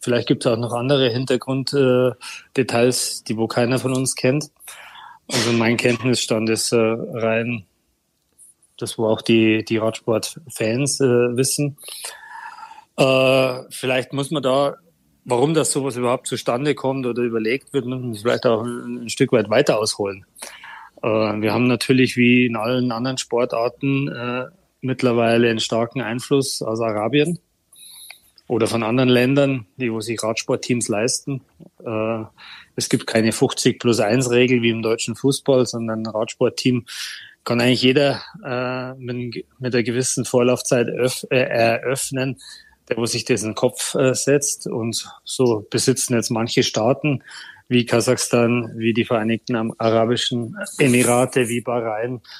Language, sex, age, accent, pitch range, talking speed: German, male, 30-49, German, 115-130 Hz, 135 wpm